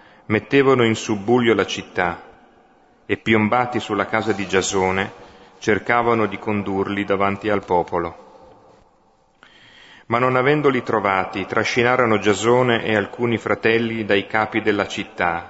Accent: native